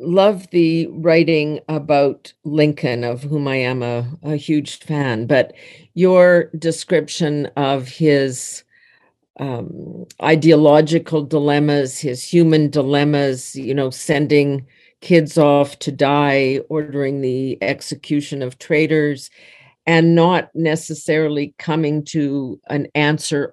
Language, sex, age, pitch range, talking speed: English, female, 50-69, 130-155 Hz, 110 wpm